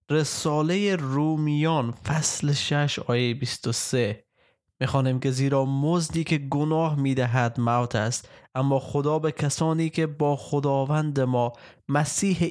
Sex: male